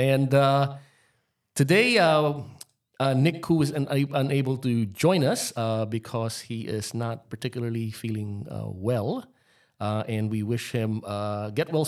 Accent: Filipino